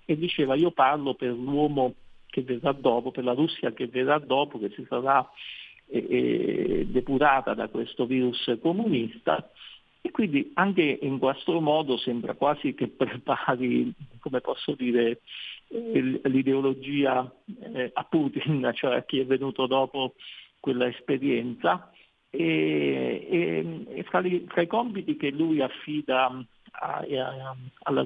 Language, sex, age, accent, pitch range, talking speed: Italian, male, 50-69, native, 125-165 Hz, 130 wpm